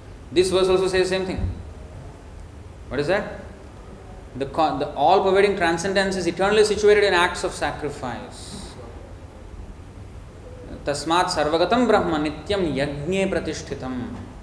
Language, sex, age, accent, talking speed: English, male, 20-39, Indian, 110 wpm